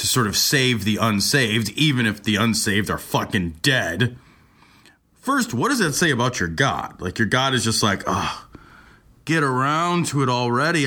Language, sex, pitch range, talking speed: English, male, 140-210 Hz, 180 wpm